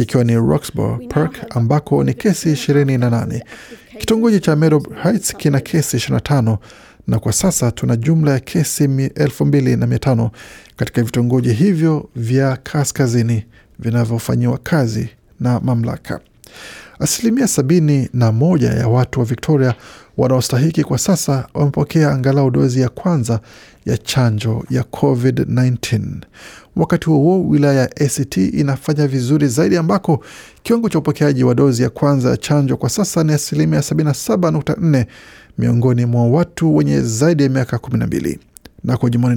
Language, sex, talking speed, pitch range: Swahili, male, 130 wpm, 120-155 Hz